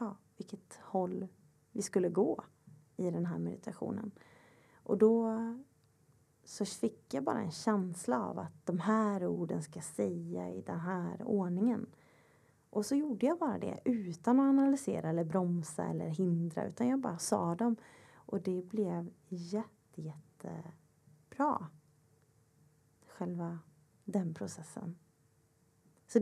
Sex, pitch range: female, 160-215 Hz